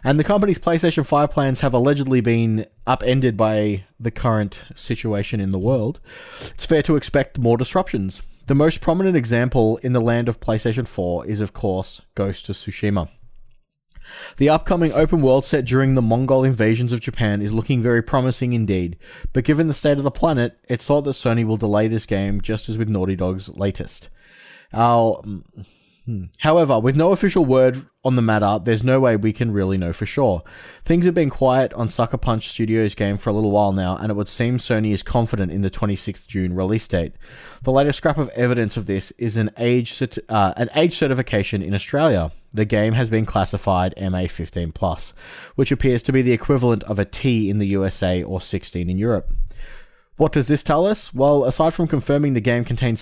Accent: Australian